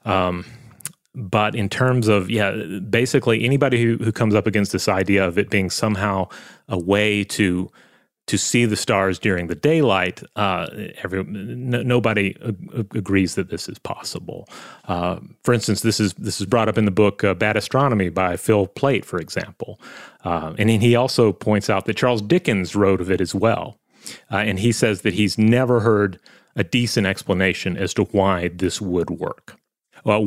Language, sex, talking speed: English, male, 180 wpm